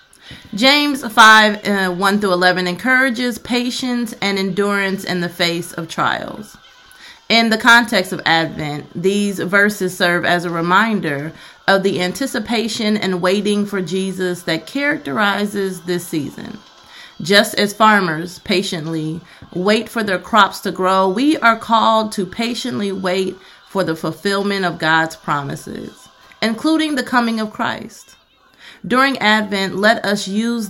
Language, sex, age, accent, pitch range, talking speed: English, female, 30-49, American, 180-225 Hz, 135 wpm